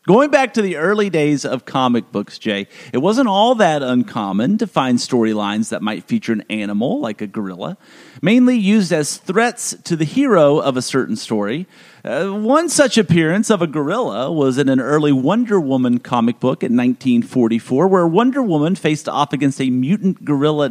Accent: American